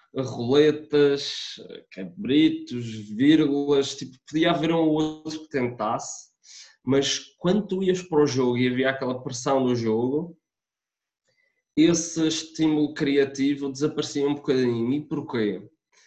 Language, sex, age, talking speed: Portuguese, male, 20-39, 115 wpm